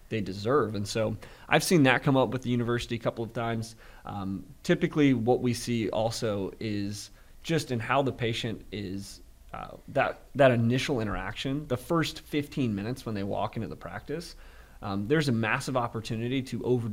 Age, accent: 30-49, American